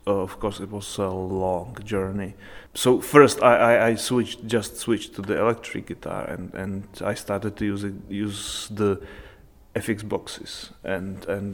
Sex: male